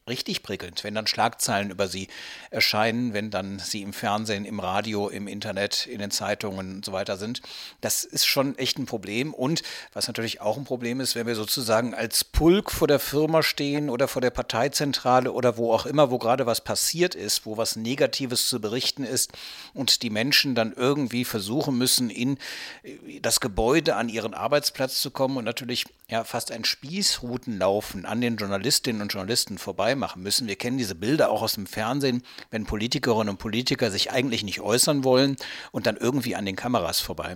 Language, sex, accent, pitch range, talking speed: German, male, German, 105-130 Hz, 190 wpm